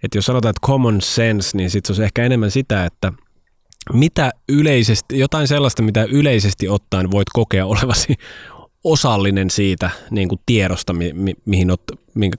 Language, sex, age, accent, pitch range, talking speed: Finnish, male, 20-39, native, 90-110 Hz, 165 wpm